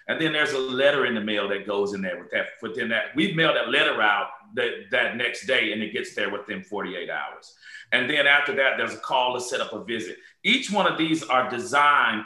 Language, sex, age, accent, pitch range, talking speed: English, male, 40-59, American, 130-180 Hz, 245 wpm